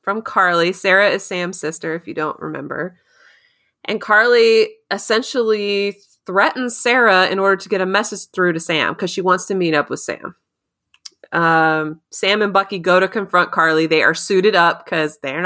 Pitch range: 165-220 Hz